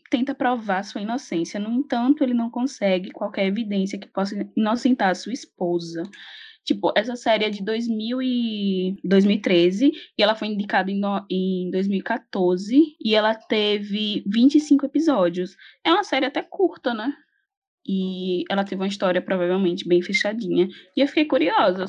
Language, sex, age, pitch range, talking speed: Portuguese, female, 10-29, 185-265 Hz, 155 wpm